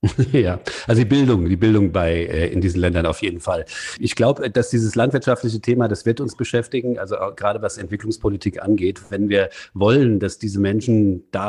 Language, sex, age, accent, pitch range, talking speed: German, male, 40-59, German, 95-115 Hz, 190 wpm